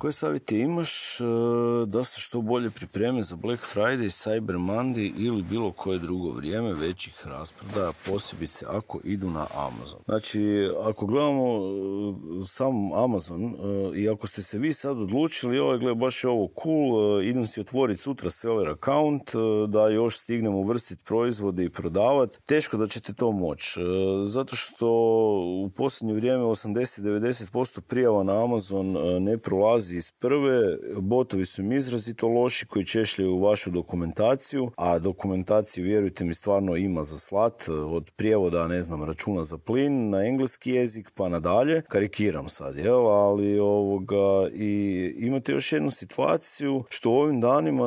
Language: Croatian